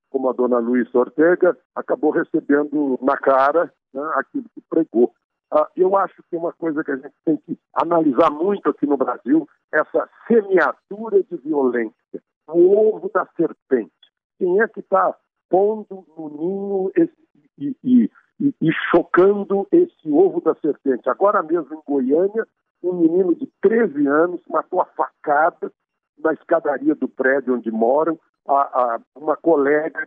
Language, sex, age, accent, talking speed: Portuguese, male, 60-79, Brazilian, 150 wpm